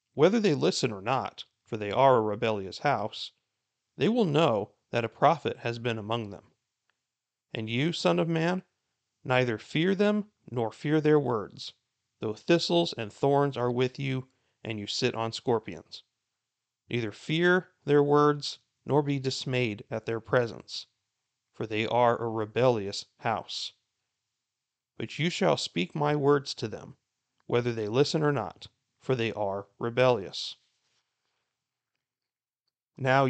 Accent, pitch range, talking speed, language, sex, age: American, 115-150 Hz, 140 wpm, English, male, 40-59